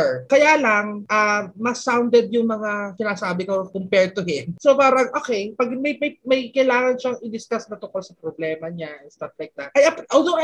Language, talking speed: English, 195 wpm